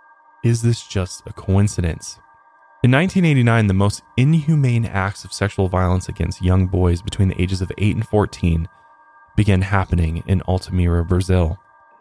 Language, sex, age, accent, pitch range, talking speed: English, male, 20-39, American, 90-110 Hz, 145 wpm